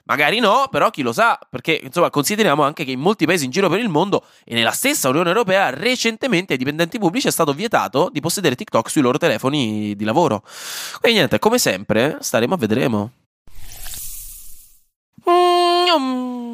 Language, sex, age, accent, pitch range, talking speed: Italian, male, 20-39, native, 145-215 Hz, 170 wpm